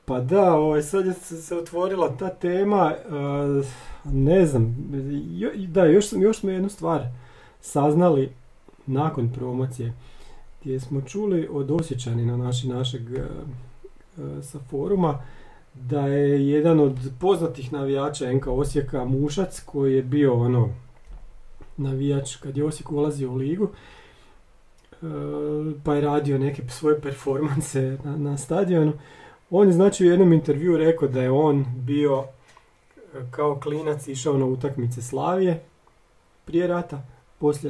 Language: Croatian